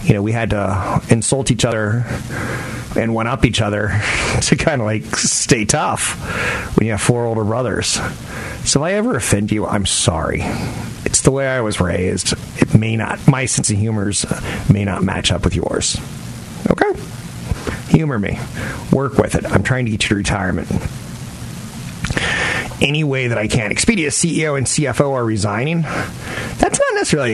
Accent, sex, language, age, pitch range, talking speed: American, male, English, 30-49, 105-130 Hz, 175 wpm